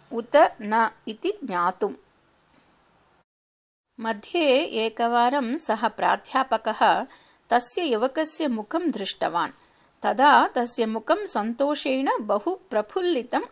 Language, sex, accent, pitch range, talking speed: English, female, Indian, 225-295 Hz, 80 wpm